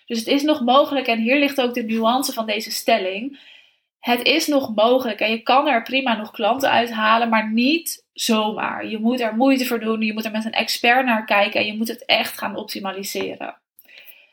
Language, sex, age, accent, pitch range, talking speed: Dutch, female, 20-39, Dutch, 220-265 Hz, 210 wpm